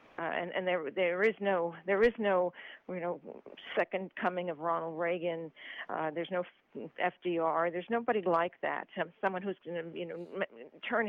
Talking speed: 180 wpm